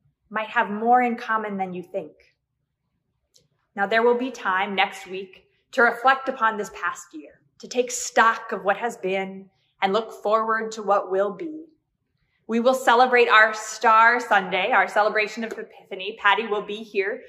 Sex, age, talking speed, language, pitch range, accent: female, 20-39, 170 wpm, English, 190-235 Hz, American